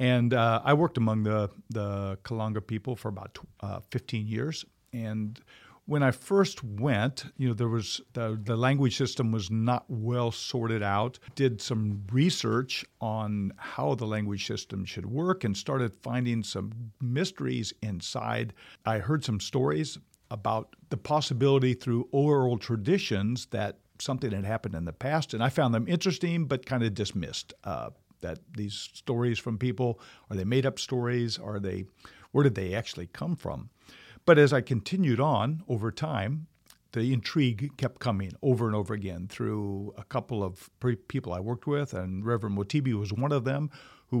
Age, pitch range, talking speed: 50-69, 105-130 Hz, 170 wpm